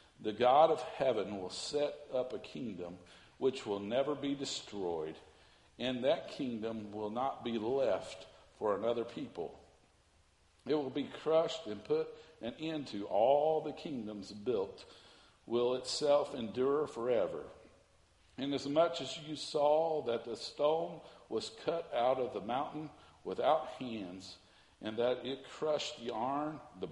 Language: English